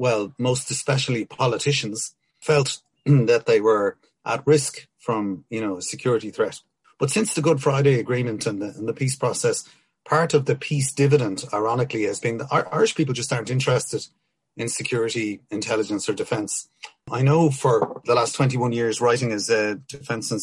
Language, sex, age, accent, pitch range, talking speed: English, male, 30-49, Irish, 110-145 Hz, 170 wpm